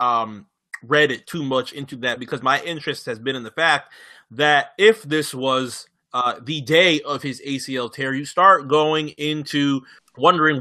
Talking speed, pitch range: 175 wpm, 130-175 Hz